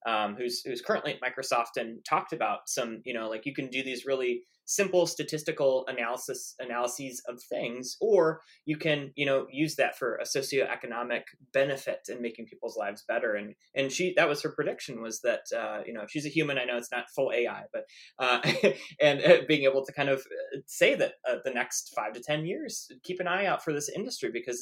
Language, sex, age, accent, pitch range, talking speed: English, male, 20-39, American, 125-160 Hz, 210 wpm